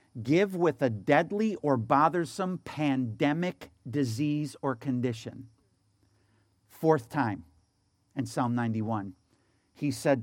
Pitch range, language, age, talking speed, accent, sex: 115-140 Hz, English, 50-69, 100 wpm, American, male